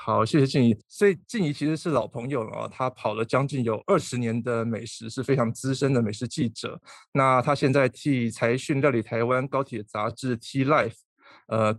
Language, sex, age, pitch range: Chinese, male, 20-39, 115-140 Hz